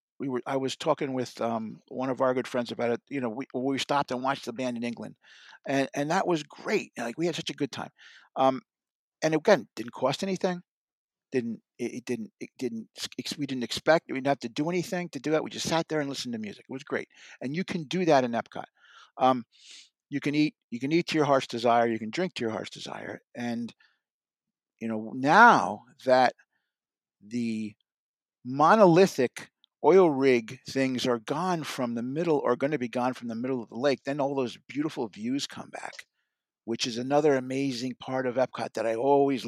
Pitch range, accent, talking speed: 120-150 Hz, American, 215 wpm